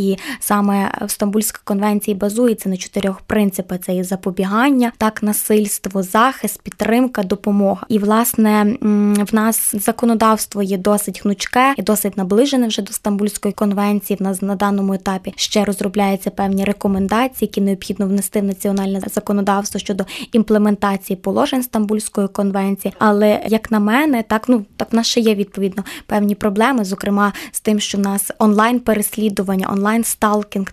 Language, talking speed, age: Ukrainian, 145 wpm, 20-39